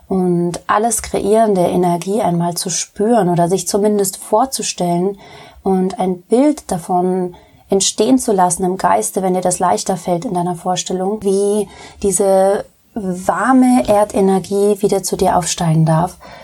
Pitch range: 180-205 Hz